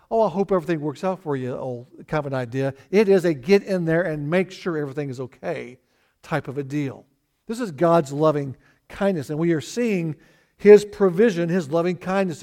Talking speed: 210 wpm